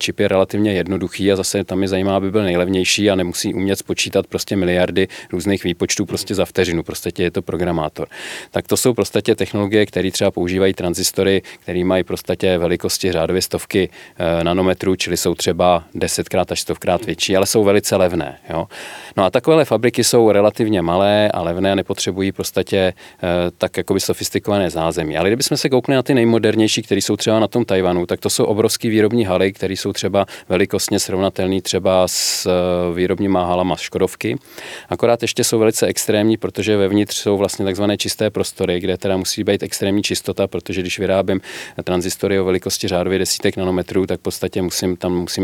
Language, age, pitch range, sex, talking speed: Czech, 40-59, 90-105 Hz, male, 175 wpm